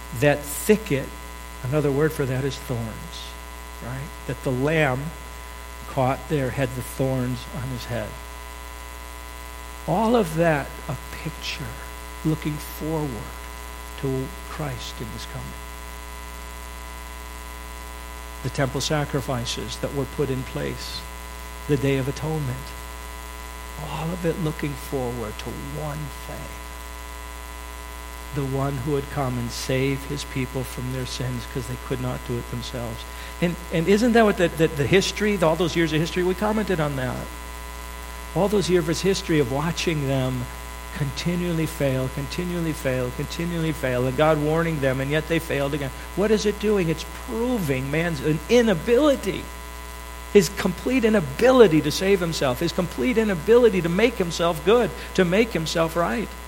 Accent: American